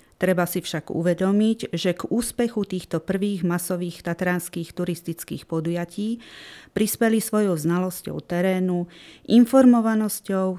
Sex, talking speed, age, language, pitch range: female, 100 wpm, 30-49, Slovak, 170-200 Hz